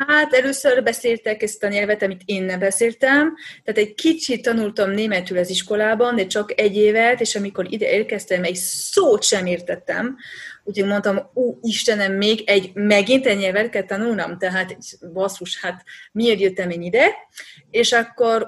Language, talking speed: English, 155 wpm